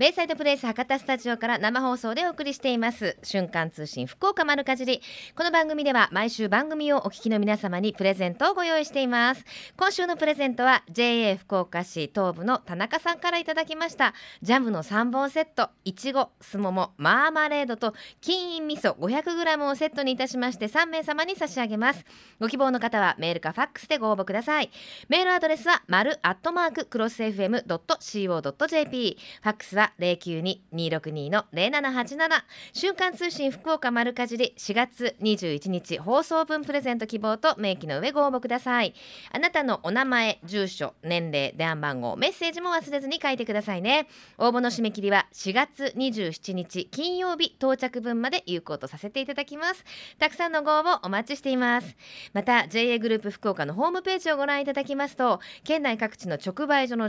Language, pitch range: Japanese, 200-300 Hz